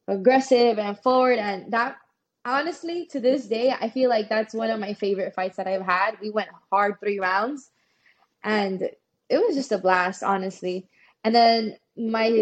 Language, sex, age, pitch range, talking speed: English, female, 10-29, 195-230 Hz, 175 wpm